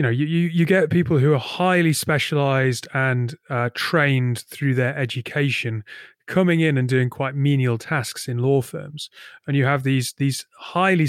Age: 30-49